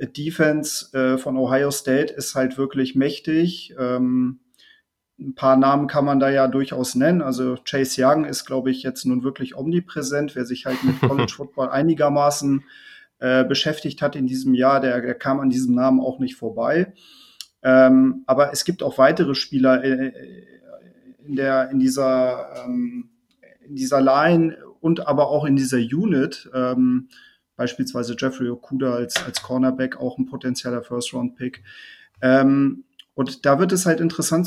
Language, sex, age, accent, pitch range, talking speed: German, male, 40-59, German, 130-160 Hz, 155 wpm